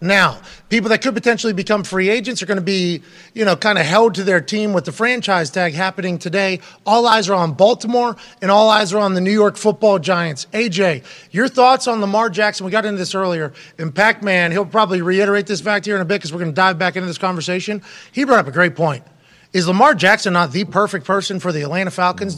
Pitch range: 180-215 Hz